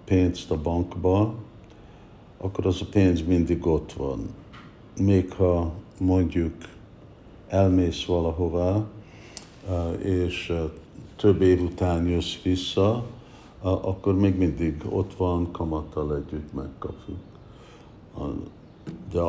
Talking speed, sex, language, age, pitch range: 95 wpm, male, Hungarian, 60-79, 80-95 Hz